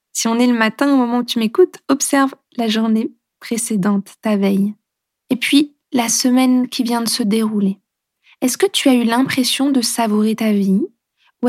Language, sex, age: French, female, 20-39